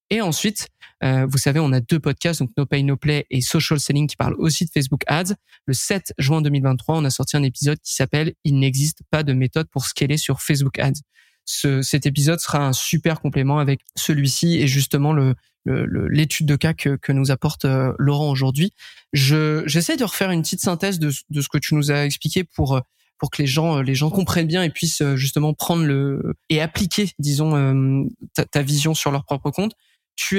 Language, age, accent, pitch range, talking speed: French, 20-39, French, 140-160 Hz, 215 wpm